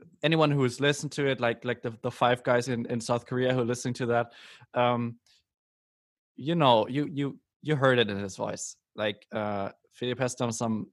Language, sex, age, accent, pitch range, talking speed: English, male, 20-39, German, 110-130 Hz, 210 wpm